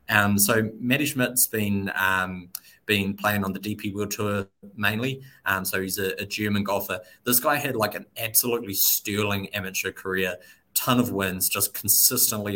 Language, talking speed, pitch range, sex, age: English, 165 wpm, 95-110 Hz, male, 20-39